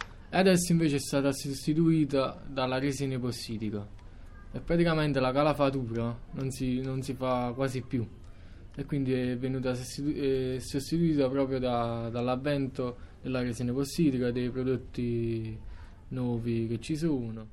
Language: Italian